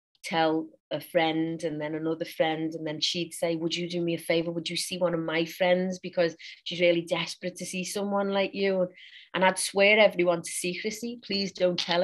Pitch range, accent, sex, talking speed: 165-195 Hz, British, female, 210 wpm